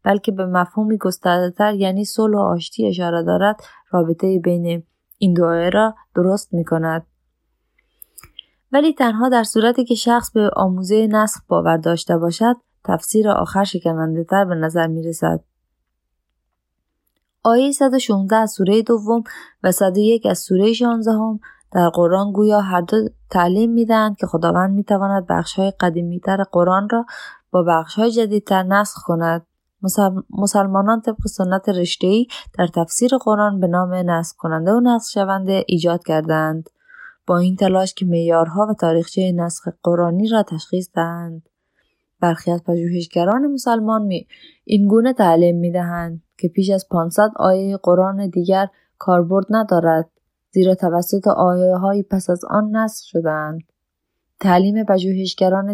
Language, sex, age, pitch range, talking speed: Persian, female, 20-39, 170-215 Hz, 130 wpm